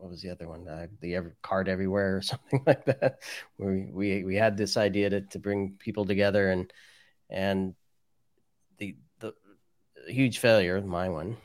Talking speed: 175 wpm